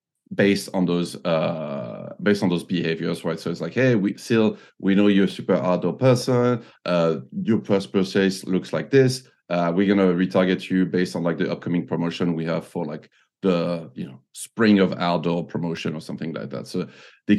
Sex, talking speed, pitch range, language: male, 195 wpm, 85-105 Hz, English